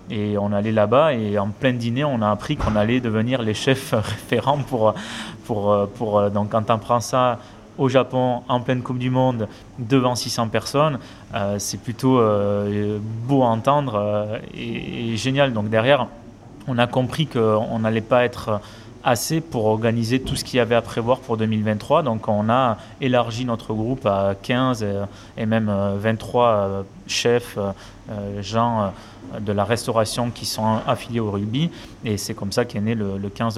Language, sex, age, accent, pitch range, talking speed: French, male, 20-39, French, 105-125 Hz, 170 wpm